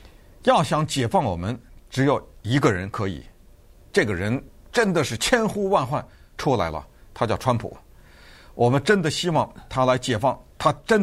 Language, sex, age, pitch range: Chinese, male, 50-69, 105-165 Hz